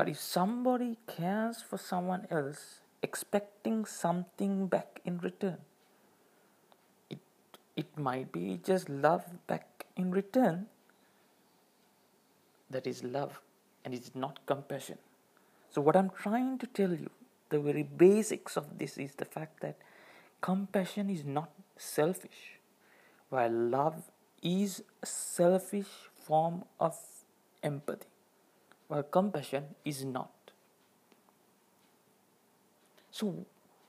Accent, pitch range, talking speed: Indian, 150-200 Hz, 110 wpm